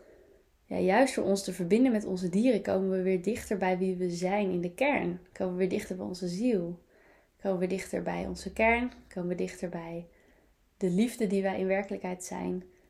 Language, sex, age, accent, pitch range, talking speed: Dutch, female, 20-39, Dutch, 185-230 Hz, 205 wpm